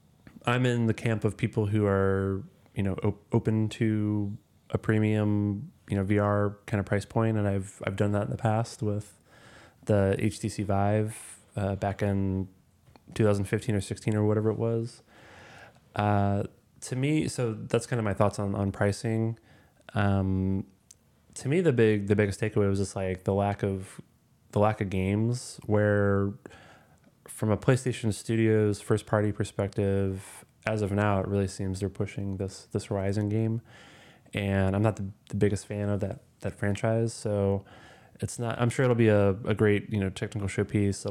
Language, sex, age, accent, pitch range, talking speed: English, male, 20-39, American, 100-110 Hz, 175 wpm